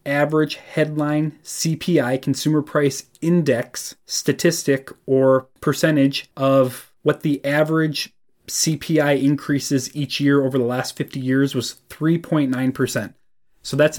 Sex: male